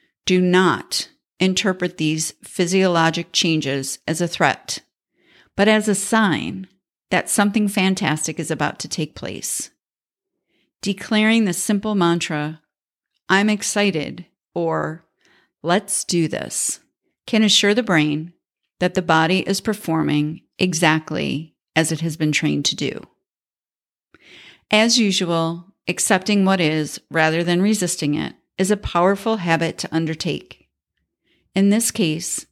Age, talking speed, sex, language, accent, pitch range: 40-59, 120 wpm, female, English, American, 160-210 Hz